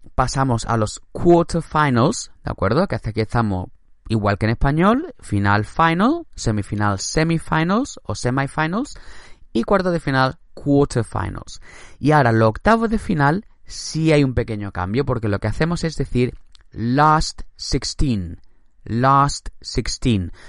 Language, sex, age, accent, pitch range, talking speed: Spanish, male, 20-39, Spanish, 105-150 Hz, 135 wpm